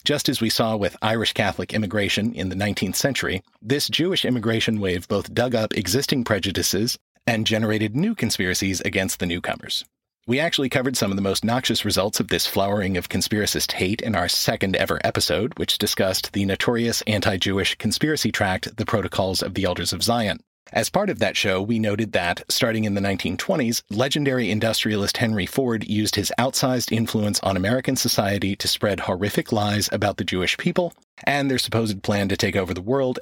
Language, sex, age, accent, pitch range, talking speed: English, male, 40-59, American, 100-120 Hz, 180 wpm